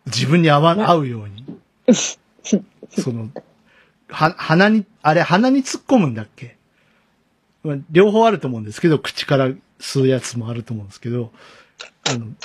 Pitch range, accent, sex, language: 120-200 Hz, native, male, Japanese